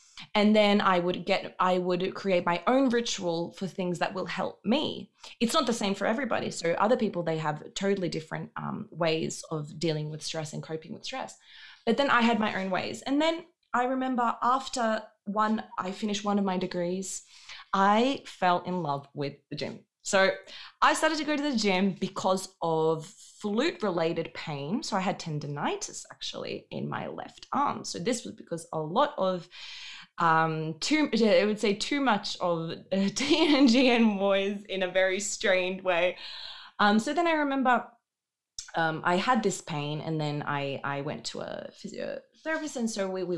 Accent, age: Australian, 20-39